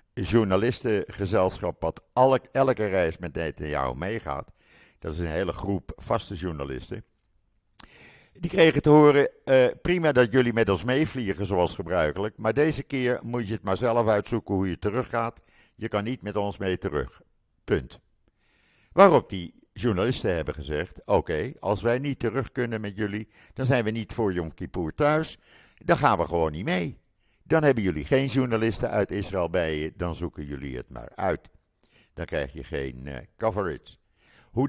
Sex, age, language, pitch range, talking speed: male, 60-79, Dutch, 90-130 Hz, 170 wpm